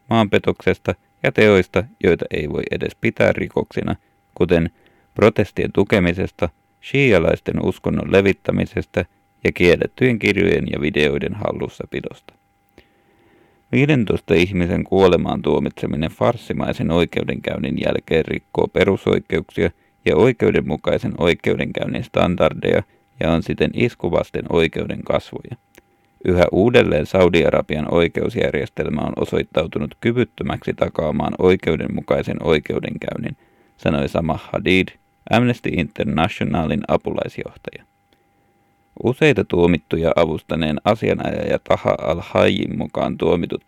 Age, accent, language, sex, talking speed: 30-49, native, Finnish, male, 90 wpm